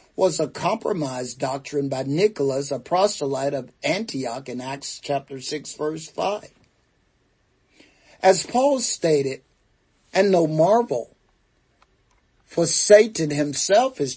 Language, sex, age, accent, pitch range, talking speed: English, male, 50-69, American, 135-190 Hz, 110 wpm